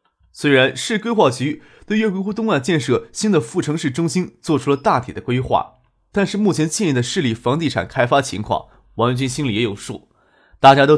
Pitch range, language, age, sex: 125-180 Hz, Chinese, 20-39, male